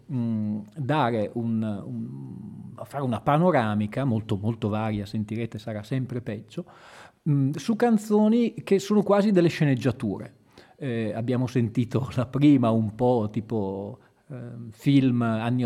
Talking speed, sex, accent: 125 wpm, male, native